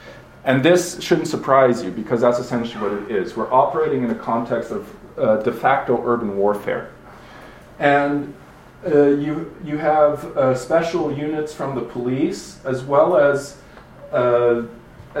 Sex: male